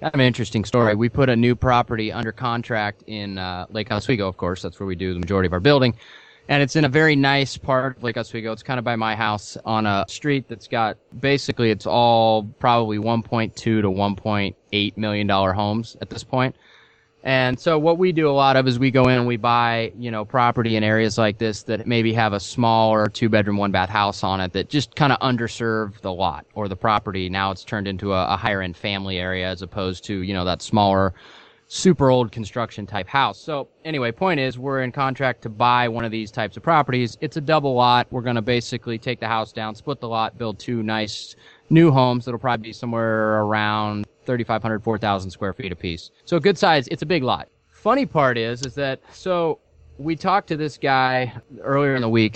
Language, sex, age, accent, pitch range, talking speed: English, male, 20-39, American, 105-135 Hz, 215 wpm